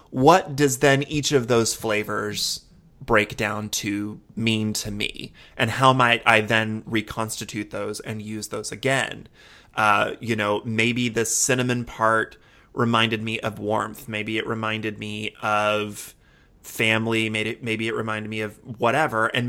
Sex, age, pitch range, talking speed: male, 30-49, 110-130 Hz, 150 wpm